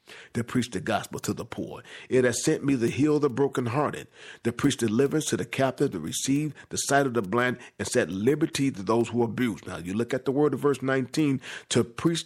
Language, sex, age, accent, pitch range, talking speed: English, male, 40-59, American, 120-140 Hz, 225 wpm